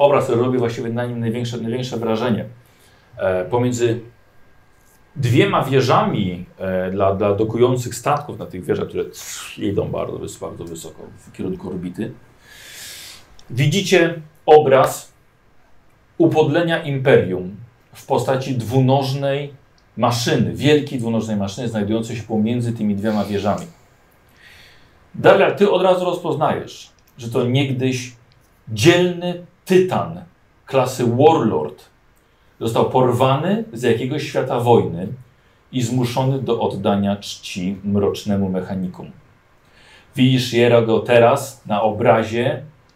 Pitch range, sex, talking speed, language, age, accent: 110-140 Hz, male, 110 wpm, Polish, 40-59, native